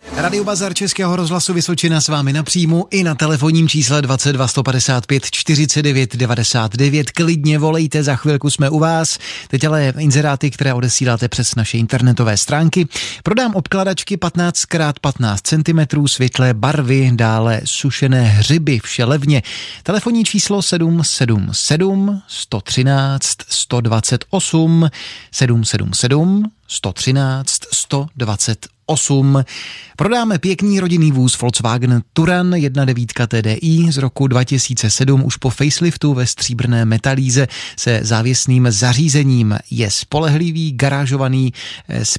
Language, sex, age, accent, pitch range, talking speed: Czech, male, 30-49, native, 120-160 Hz, 110 wpm